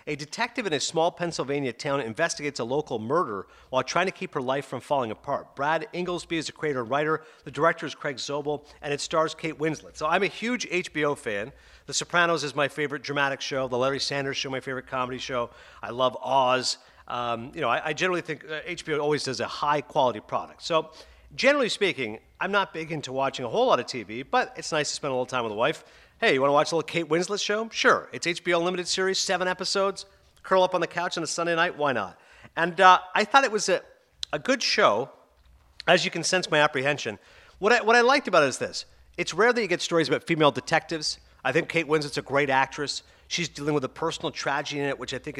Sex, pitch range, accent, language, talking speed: male, 140-175 Hz, American, English, 235 wpm